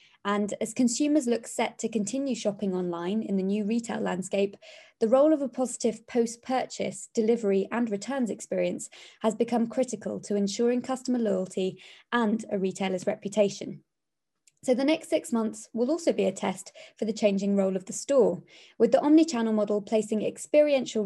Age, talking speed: 20-39, 165 wpm